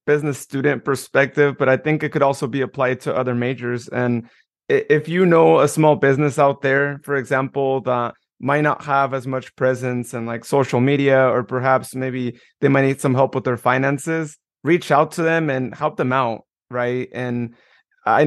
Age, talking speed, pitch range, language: 20-39, 190 wpm, 130-150 Hz, English